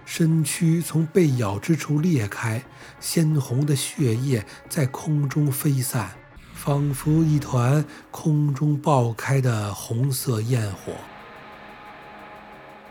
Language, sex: Chinese, male